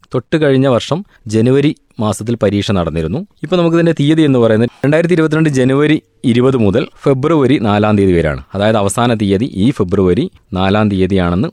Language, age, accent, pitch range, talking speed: Malayalam, 20-39, native, 95-125 Hz, 145 wpm